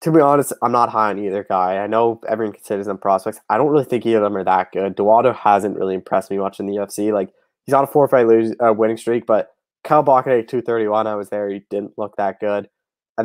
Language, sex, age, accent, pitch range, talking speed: English, male, 20-39, American, 100-115 Hz, 260 wpm